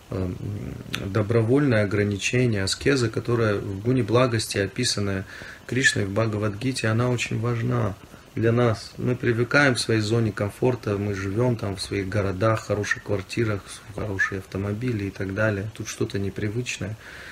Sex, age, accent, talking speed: male, 30-49, native, 130 wpm